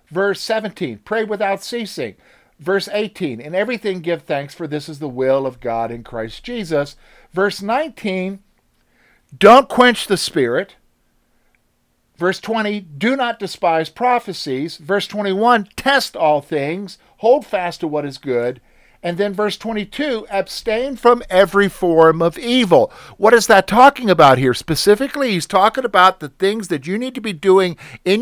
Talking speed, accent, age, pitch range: 155 wpm, American, 50-69, 165-230 Hz